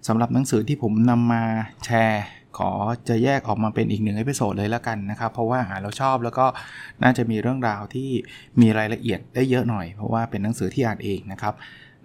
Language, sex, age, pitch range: Thai, male, 20-39, 110-130 Hz